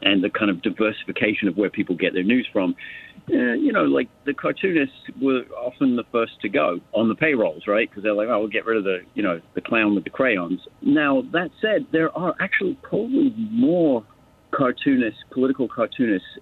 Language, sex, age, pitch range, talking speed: English, male, 50-69, 100-160 Hz, 200 wpm